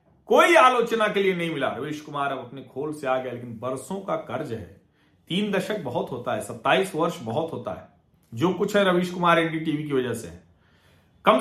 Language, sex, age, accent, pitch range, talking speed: Hindi, male, 40-59, native, 165-235 Hz, 210 wpm